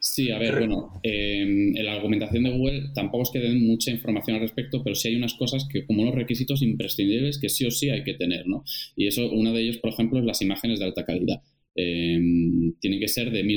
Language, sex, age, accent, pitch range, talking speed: Spanish, male, 20-39, Spanish, 95-115 Hz, 240 wpm